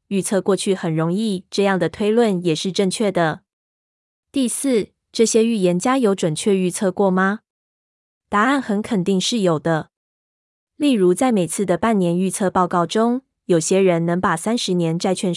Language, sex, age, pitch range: Chinese, female, 20-39, 175-210 Hz